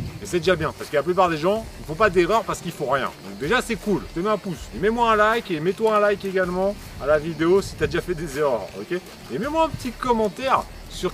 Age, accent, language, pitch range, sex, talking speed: 30-49, French, French, 130-190 Hz, male, 285 wpm